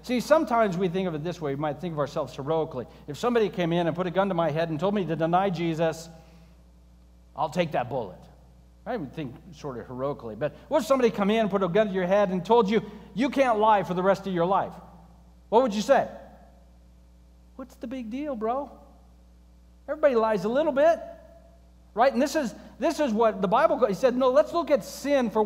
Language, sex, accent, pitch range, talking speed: English, male, American, 170-245 Hz, 230 wpm